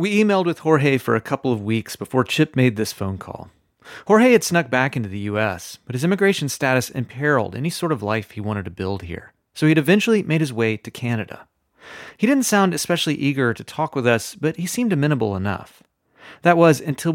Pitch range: 110-155 Hz